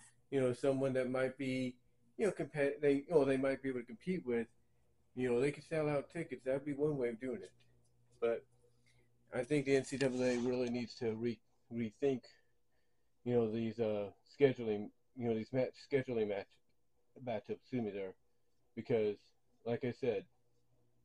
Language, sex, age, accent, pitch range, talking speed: English, male, 40-59, American, 115-125 Hz, 180 wpm